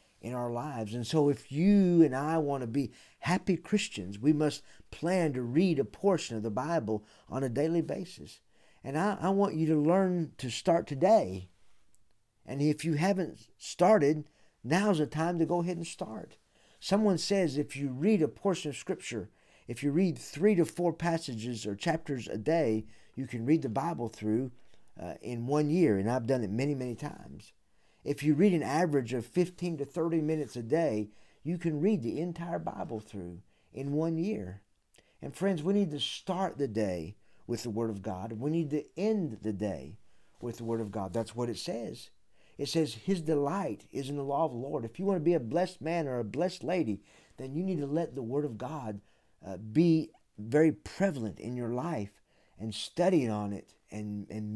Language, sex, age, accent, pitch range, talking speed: English, male, 50-69, American, 110-165 Hz, 200 wpm